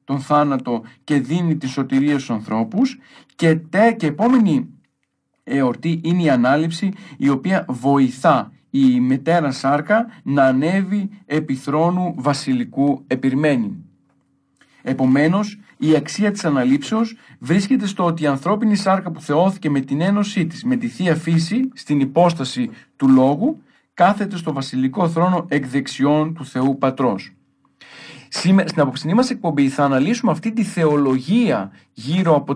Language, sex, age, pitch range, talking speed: Greek, male, 40-59, 135-195 Hz, 130 wpm